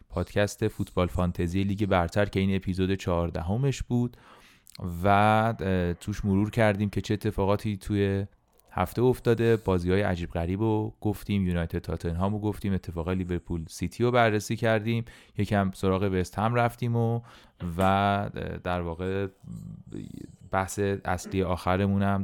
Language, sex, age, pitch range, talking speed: Persian, male, 30-49, 85-105 Hz, 130 wpm